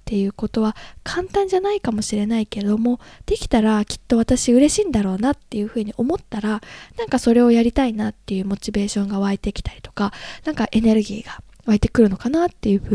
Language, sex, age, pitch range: Japanese, female, 20-39, 205-270 Hz